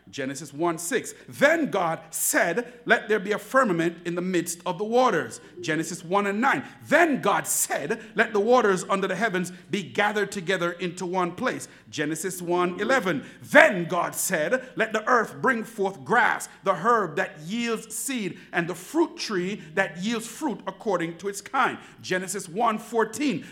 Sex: male